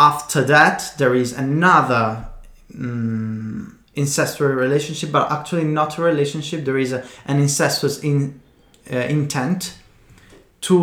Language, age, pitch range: Italian, 20-39, 125-155 Hz